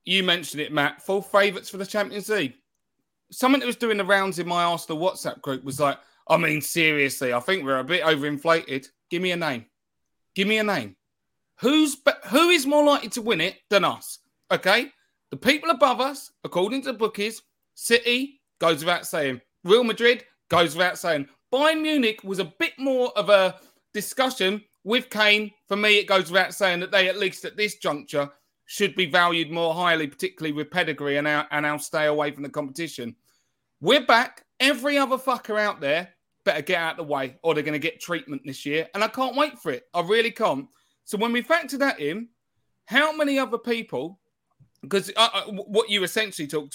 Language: English